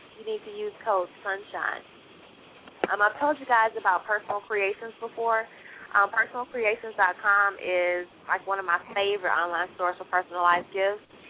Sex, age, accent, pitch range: female, 20-39, American, 175-205 Hz